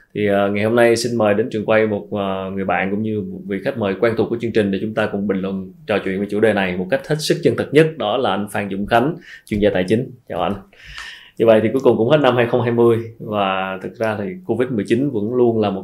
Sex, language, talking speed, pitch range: male, Vietnamese, 275 wpm, 100-125 Hz